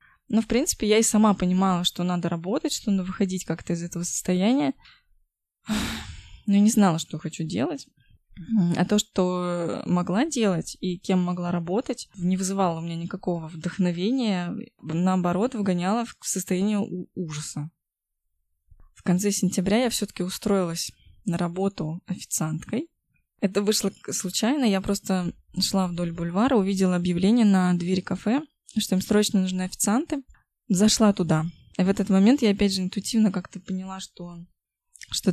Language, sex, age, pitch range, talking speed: Russian, female, 20-39, 175-210 Hz, 145 wpm